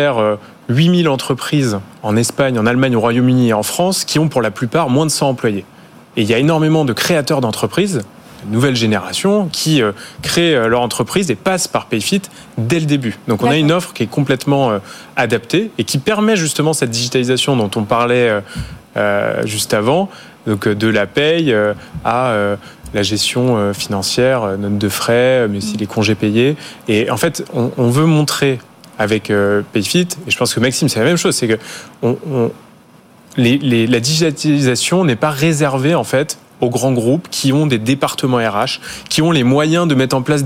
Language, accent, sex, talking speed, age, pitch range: French, French, male, 185 wpm, 20-39, 115-155 Hz